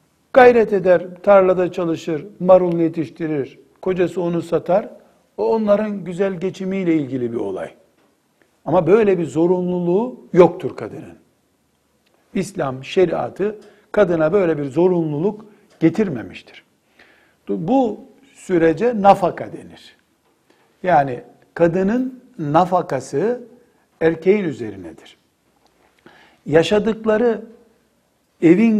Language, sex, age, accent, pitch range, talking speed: Turkish, male, 60-79, native, 155-205 Hz, 85 wpm